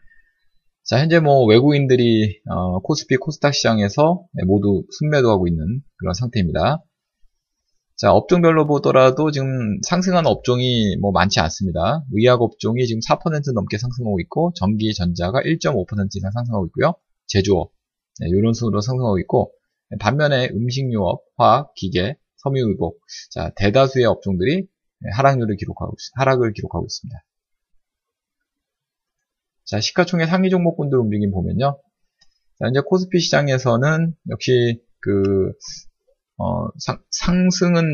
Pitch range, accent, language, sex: 105-155 Hz, native, Korean, male